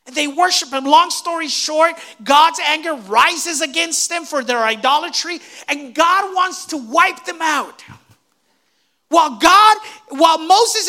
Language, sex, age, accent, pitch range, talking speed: English, male, 40-59, American, 245-340 Hz, 145 wpm